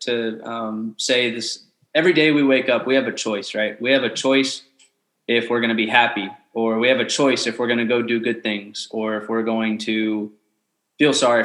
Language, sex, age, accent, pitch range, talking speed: English, male, 20-39, American, 115-140 Hz, 230 wpm